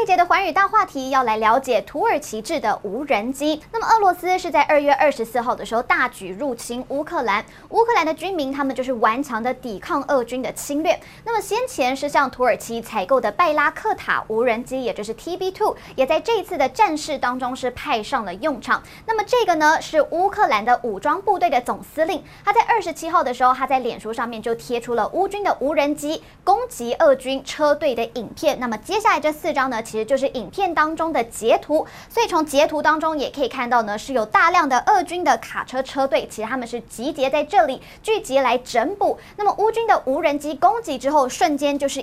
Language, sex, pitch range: Chinese, male, 250-350 Hz